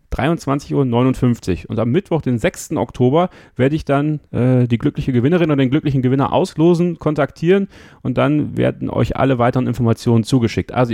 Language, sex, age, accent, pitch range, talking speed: German, male, 30-49, German, 110-155 Hz, 160 wpm